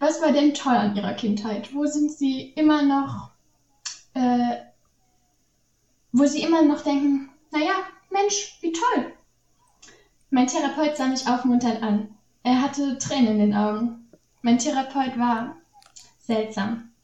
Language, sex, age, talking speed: German, female, 10-29, 135 wpm